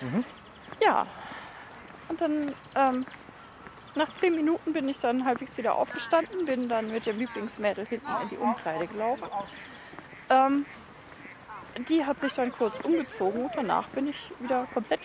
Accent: German